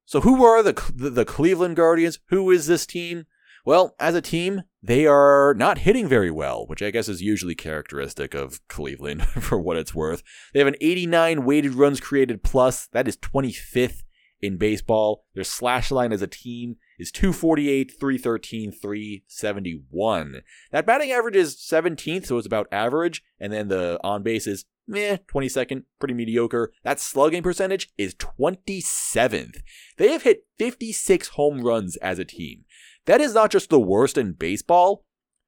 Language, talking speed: English, 160 wpm